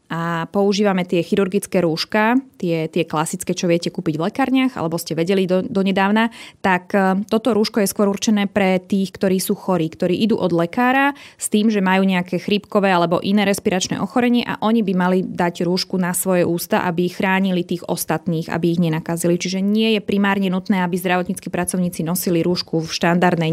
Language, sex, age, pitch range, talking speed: Slovak, female, 20-39, 180-210 Hz, 180 wpm